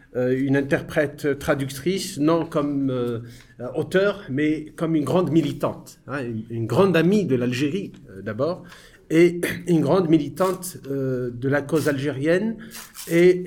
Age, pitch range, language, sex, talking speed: 50-69, 120-160 Hz, English, male, 135 wpm